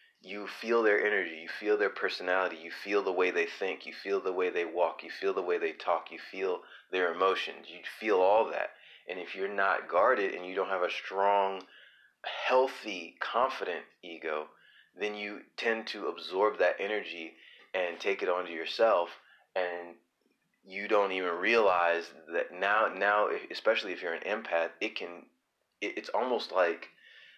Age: 30-49